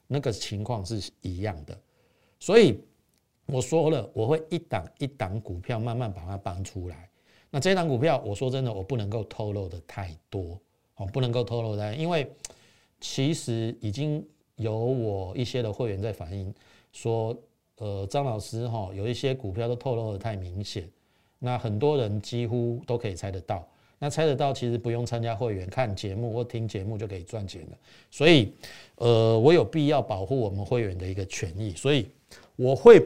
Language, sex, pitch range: Chinese, male, 100-130 Hz